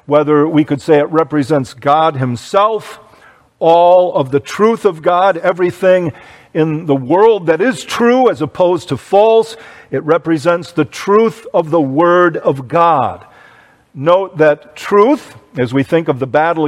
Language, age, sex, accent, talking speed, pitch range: English, 50-69, male, American, 155 wpm, 145-195 Hz